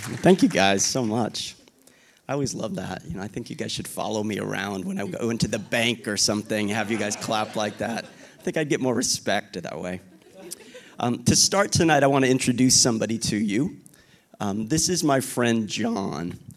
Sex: male